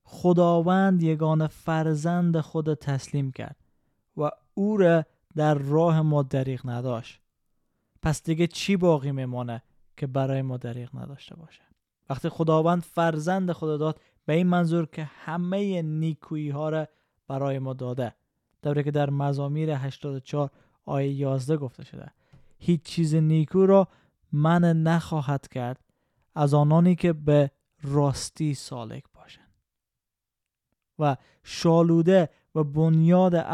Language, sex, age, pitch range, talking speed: Persian, male, 20-39, 140-165 Hz, 115 wpm